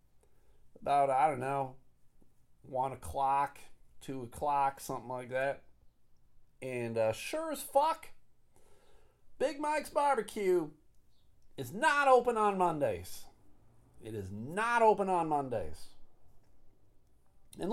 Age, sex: 40-59, male